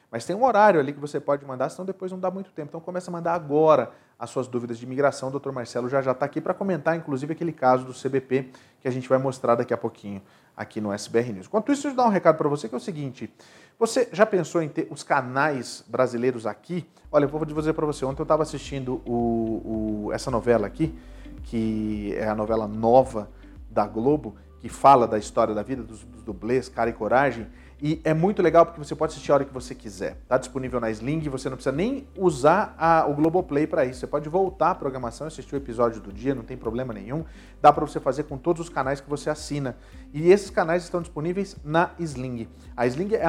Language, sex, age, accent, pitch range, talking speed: Portuguese, male, 40-59, Brazilian, 120-165 Hz, 235 wpm